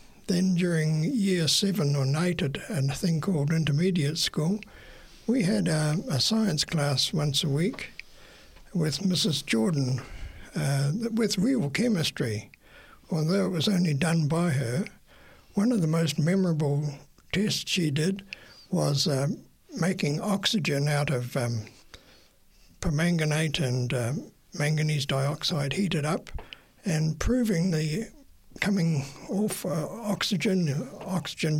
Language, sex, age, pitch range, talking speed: English, male, 60-79, 150-195 Hz, 125 wpm